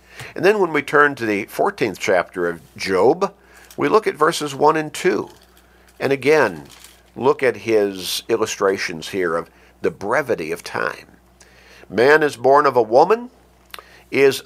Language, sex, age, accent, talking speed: English, male, 50-69, American, 155 wpm